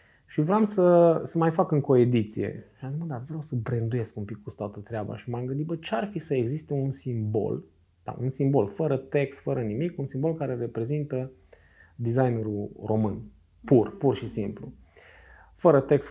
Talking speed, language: 185 wpm, Romanian